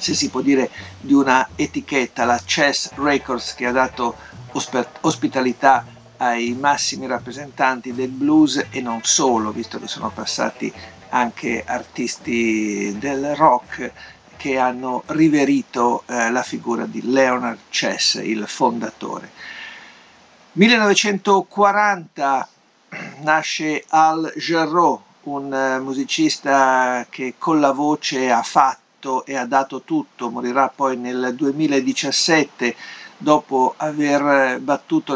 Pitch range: 125-155 Hz